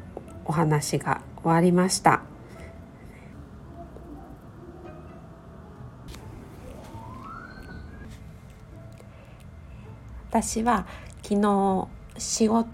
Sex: female